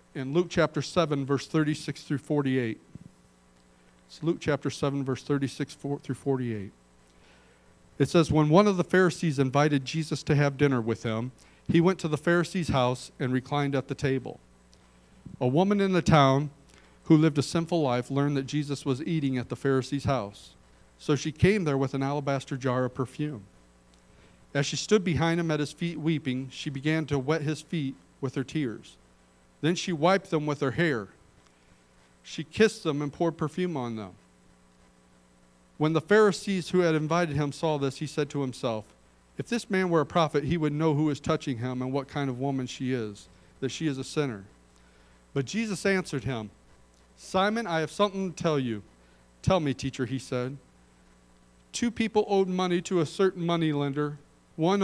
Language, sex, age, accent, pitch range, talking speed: English, male, 40-59, American, 120-165 Hz, 180 wpm